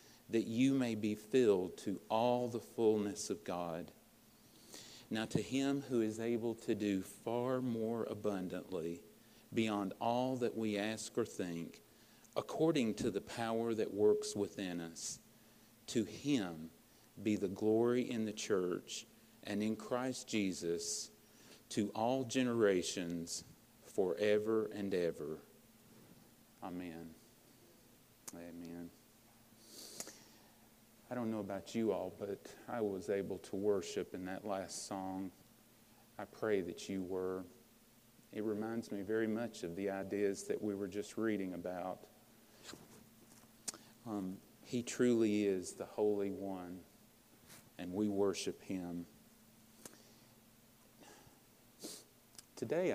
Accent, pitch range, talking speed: American, 95-115 Hz, 120 wpm